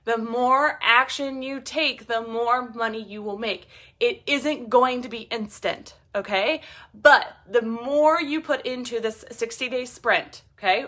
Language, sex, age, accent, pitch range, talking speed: English, female, 20-39, American, 215-275 Hz, 155 wpm